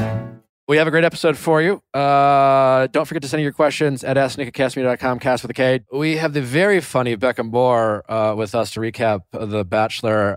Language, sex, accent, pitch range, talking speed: English, male, American, 110-150 Hz, 190 wpm